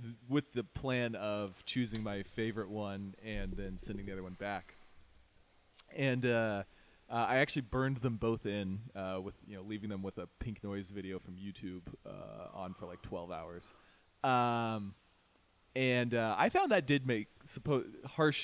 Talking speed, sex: 175 wpm, male